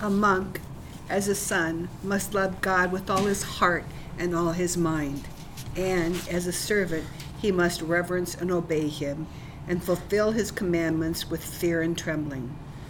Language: English